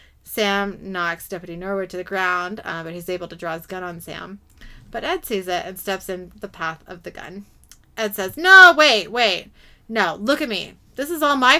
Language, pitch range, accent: English, 180-255 Hz, American